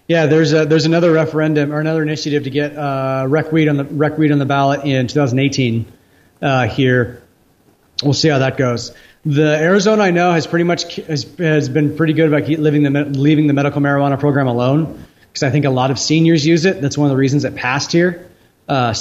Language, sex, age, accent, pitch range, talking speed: English, male, 30-49, American, 135-160 Hz, 210 wpm